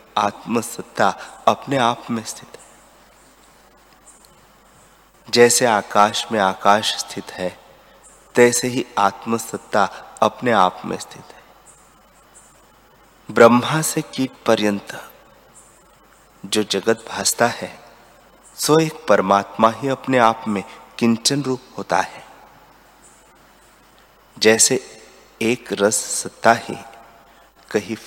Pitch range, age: 100-120 Hz, 30-49